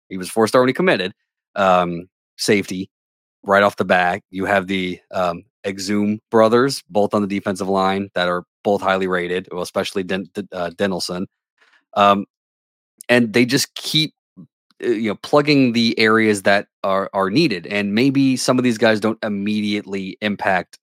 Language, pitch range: English, 95-110 Hz